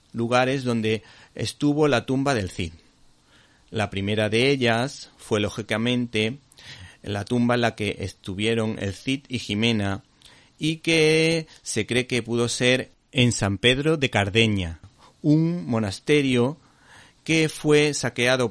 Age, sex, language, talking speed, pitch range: 40-59, male, Spanish, 130 wpm, 110-140 Hz